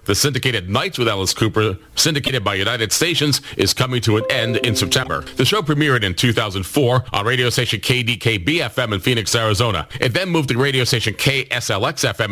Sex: male